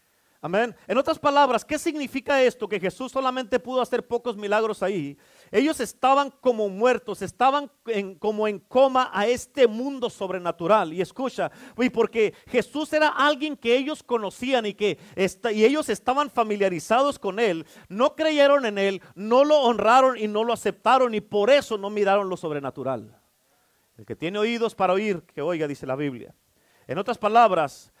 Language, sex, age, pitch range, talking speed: Spanish, male, 40-59, 205-265 Hz, 160 wpm